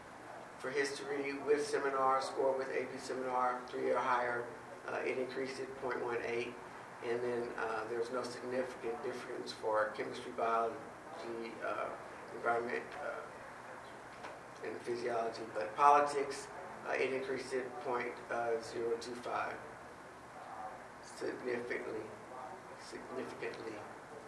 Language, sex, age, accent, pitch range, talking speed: English, male, 50-69, American, 120-145 Hz, 100 wpm